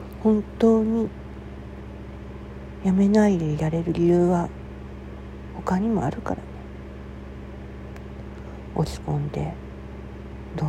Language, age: Japanese, 40-59